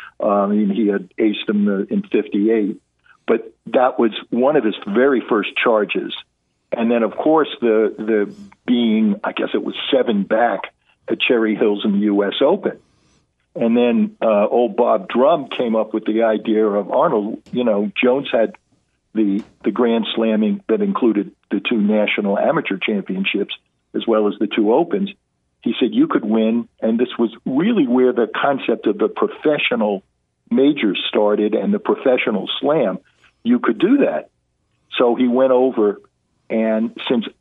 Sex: male